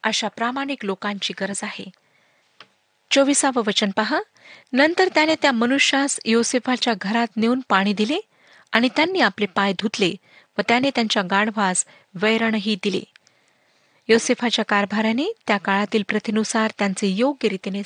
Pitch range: 205-265 Hz